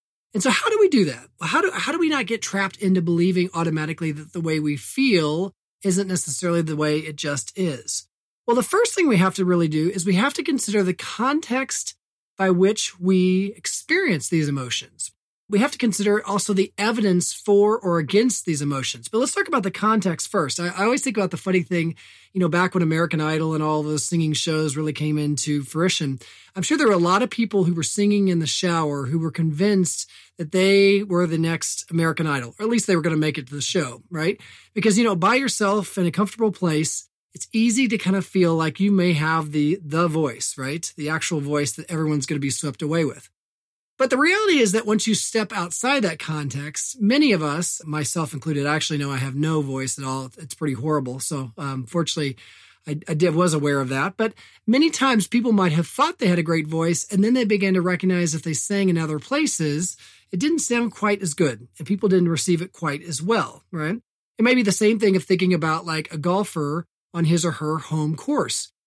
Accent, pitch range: American, 155-205 Hz